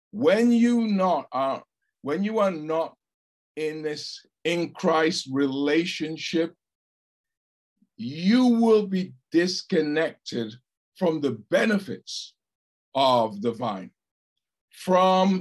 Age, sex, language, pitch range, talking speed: 50-69, male, English, 155-215 Hz, 95 wpm